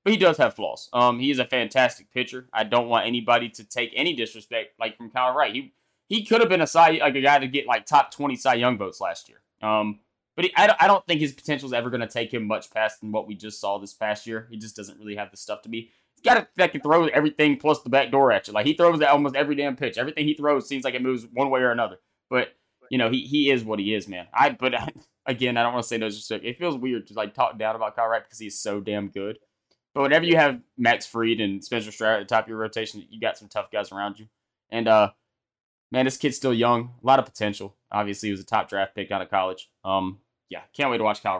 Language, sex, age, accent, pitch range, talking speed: English, male, 20-39, American, 110-140 Hz, 285 wpm